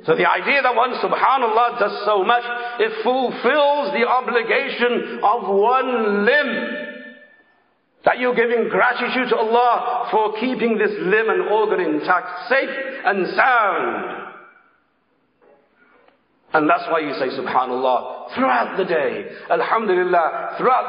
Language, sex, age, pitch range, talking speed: English, male, 50-69, 205-270 Hz, 125 wpm